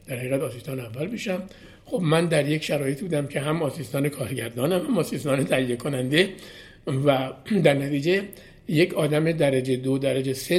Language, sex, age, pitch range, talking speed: Persian, male, 60-79, 130-180 Hz, 155 wpm